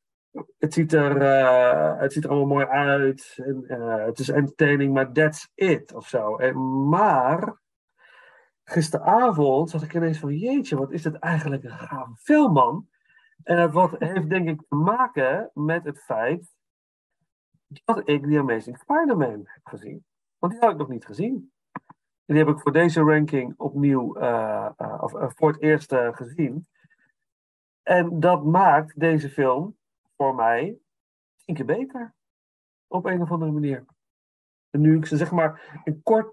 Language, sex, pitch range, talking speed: Dutch, male, 135-170 Hz, 165 wpm